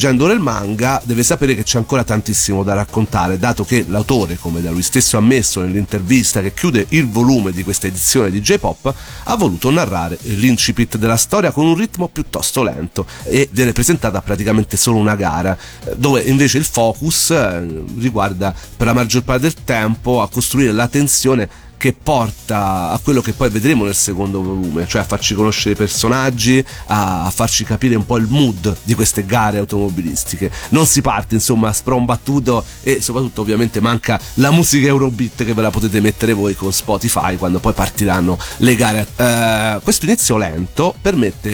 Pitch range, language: 100-130 Hz, Italian